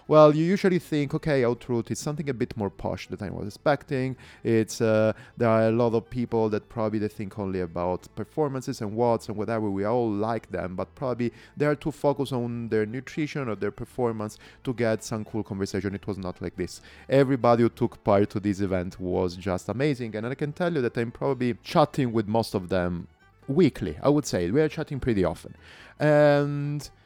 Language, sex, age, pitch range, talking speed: English, male, 30-49, 100-130 Hz, 210 wpm